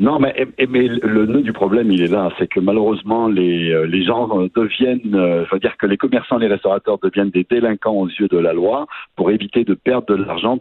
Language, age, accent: French, 60-79, French